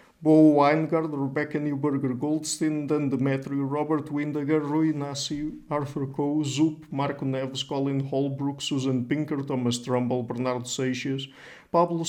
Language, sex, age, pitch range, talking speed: English, male, 50-69, 130-150 Hz, 125 wpm